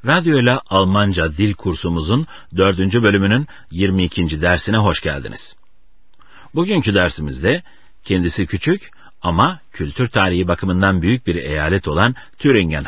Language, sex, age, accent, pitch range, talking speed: Turkish, male, 60-79, native, 85-110 Hz, 115 wpm